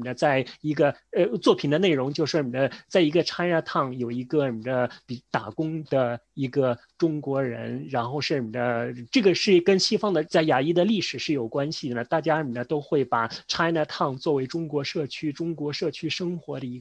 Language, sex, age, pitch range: Chinese, male, 30-49, 130-170 Hz